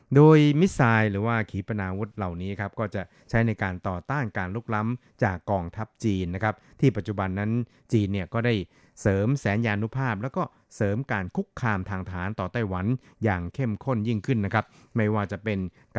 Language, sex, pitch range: Thai, male, 95-120 Hz